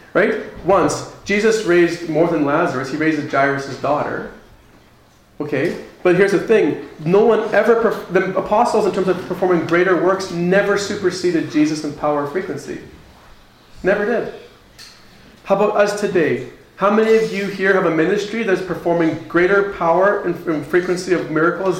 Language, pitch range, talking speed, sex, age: English, 155-200 Hz, 155 wpm, male, 30-49